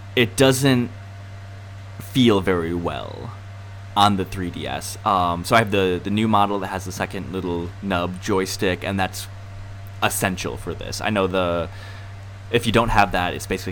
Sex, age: male, 20-39